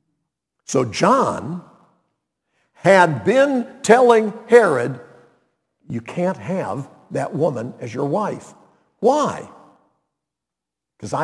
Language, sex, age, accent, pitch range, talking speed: English, male, 60-79, American, 160-245 Hz, 85 wpm